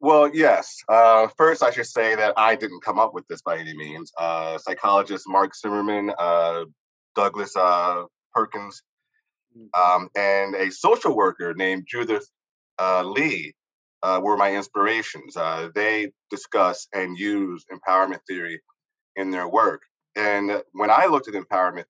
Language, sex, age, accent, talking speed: English, male, 30-49, American, 150 wpm